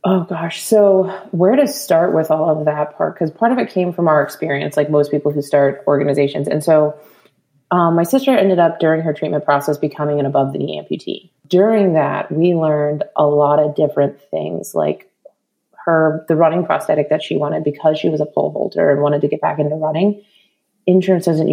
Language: English